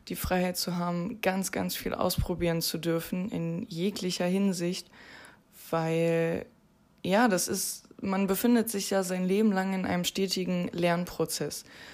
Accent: German